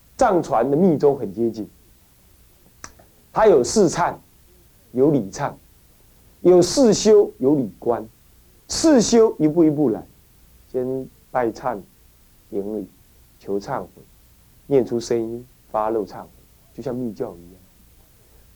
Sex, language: male, Chinese